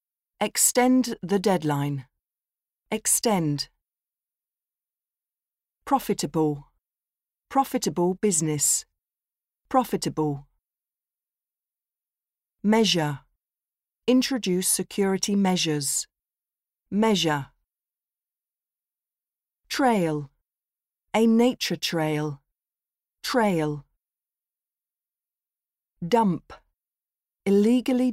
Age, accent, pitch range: 40-59, British, 155-220 Hz